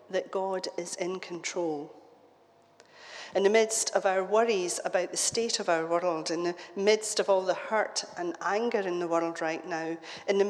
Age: 40-59